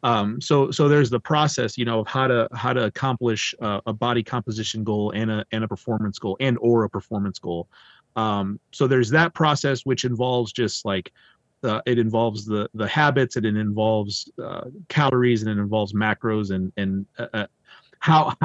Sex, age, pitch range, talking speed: male, 30-49, 105-130 Hz, 190 wpm